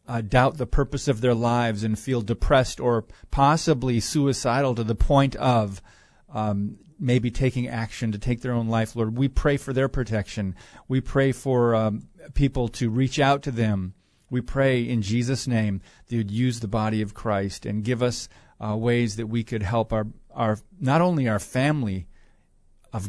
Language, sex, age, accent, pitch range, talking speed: English, male, 40-59, American, 105-130 Hz, 180 wpm